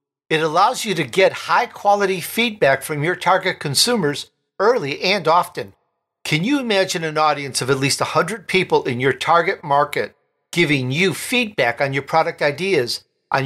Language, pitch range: English, 145-190 Hz